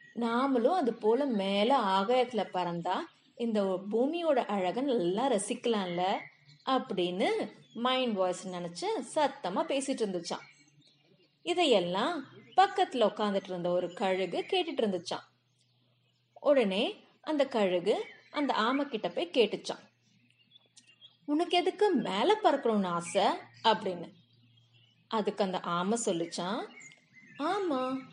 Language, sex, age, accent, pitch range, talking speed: Tamil, female, 30-49, native, 185-275 Hz, 60 wpm